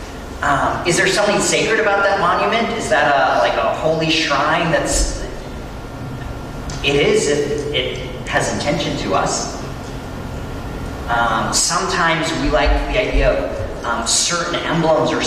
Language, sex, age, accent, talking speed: English, male, 40-59, American, 140 wpm